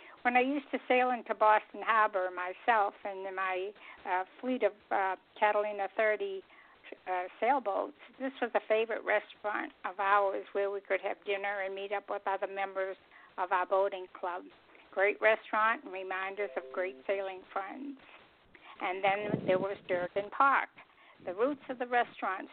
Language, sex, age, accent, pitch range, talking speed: English, female, 60-79, American, 195-230 Hz, 160 wpm